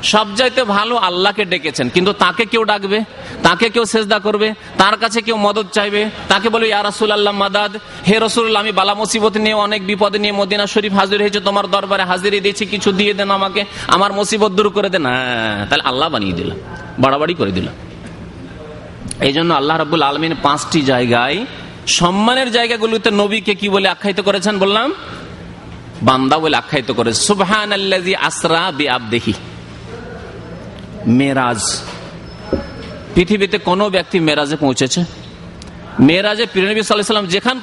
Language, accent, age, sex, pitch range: Bengali, native, 30-49, male, 165-215 Hz